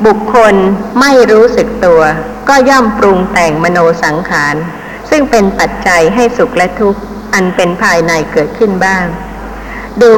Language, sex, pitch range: Thai, female, 185-235 Hz